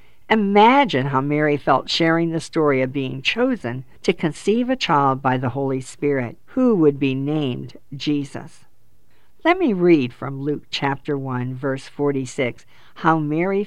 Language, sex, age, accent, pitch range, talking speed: English, female, 50-69, American, 130-170 Hz, 150 wpm